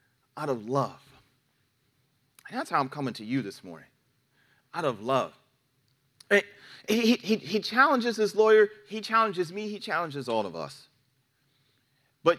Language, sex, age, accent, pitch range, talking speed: English, male, 30-49, American, 125-170 Hz, 145 wpm